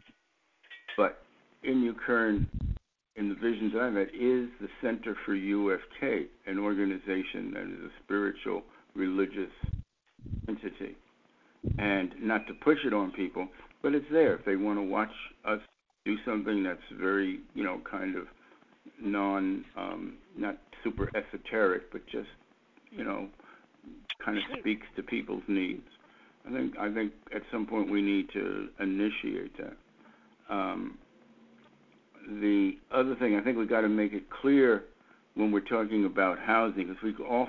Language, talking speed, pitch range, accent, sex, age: English, 150 wpm, 100-115 Hz, American, male, 60-79